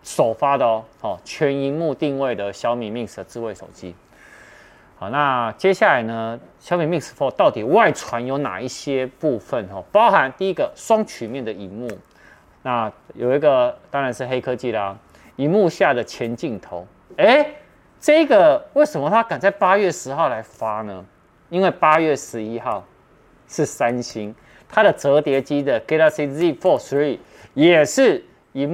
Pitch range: 110-150 Hz